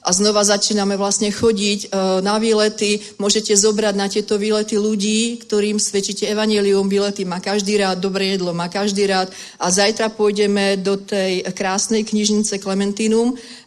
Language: Czech